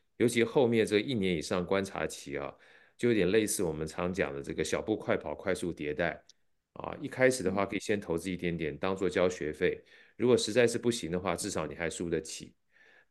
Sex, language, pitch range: male, Chinese, 90-115 Hz